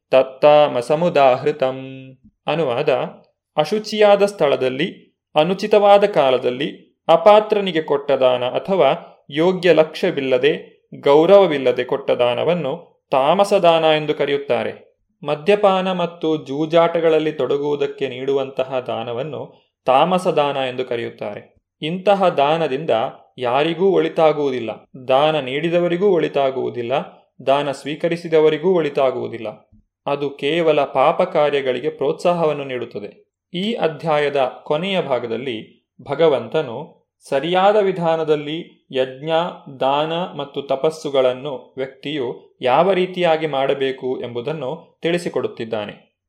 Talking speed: 80 wpm